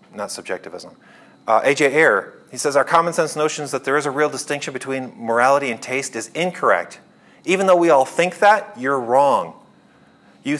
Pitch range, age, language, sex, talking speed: 120-160 Hz, 30-49, English, male, 180 wpm